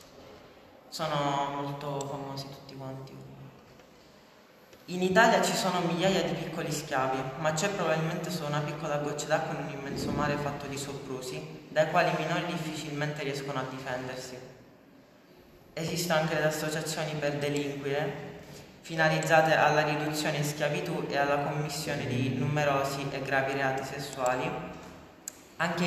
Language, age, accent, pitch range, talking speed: Italian, 20-39, native, 135-155 Hz, 130 wpm